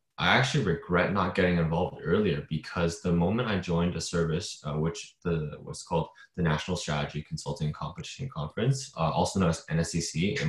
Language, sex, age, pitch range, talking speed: English, male, 10-29, 80-95 Hz, 175 wpm